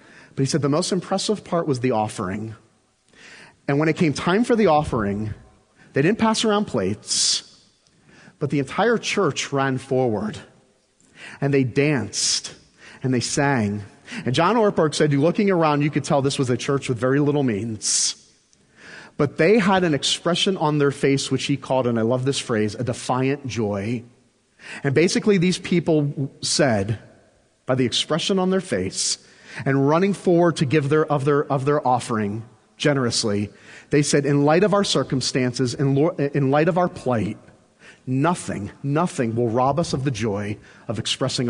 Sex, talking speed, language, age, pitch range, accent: male, 170 wpm, English, 30-49, 110-150 Hz, American